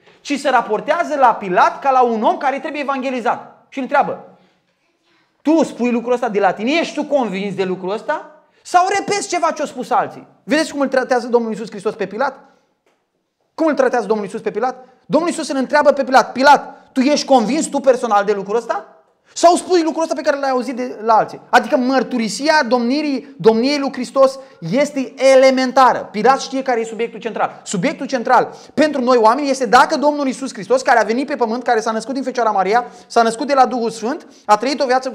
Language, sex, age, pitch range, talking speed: Romanian, male, 20-39, 220-285 Hz, 205 wpm